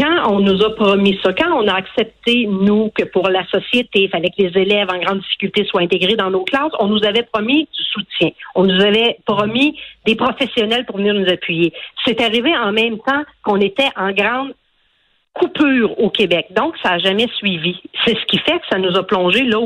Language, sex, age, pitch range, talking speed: French, female, 50-69, 200-275 Hz, 215 wpm